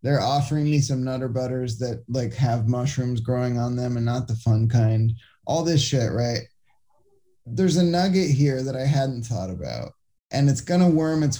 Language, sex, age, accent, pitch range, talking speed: English, male, 20-39, American, 115-150 Hz, 190 wpm